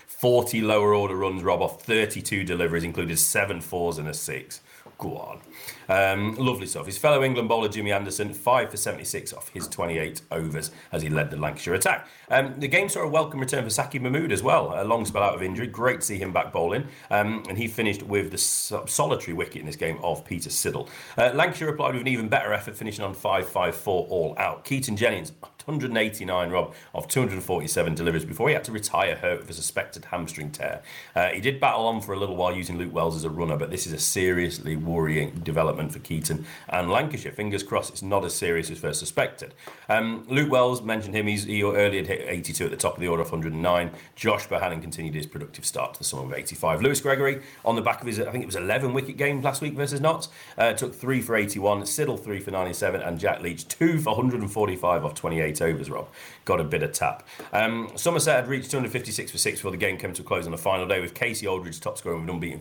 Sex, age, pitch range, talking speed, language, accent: male, 40-59, 85-125 Hz, 230 wpm, English, British